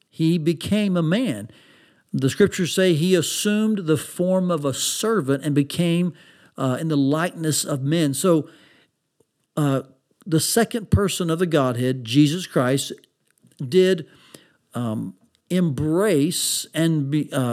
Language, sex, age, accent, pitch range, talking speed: English, male, 50-69, American, 145-185 Hz, 125 wpm